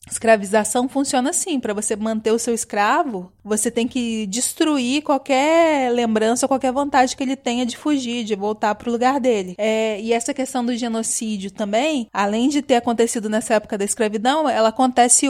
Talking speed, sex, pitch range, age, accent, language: 175 wpm, female, 225-270 Hz, 20-39, Brazilian, Portuguese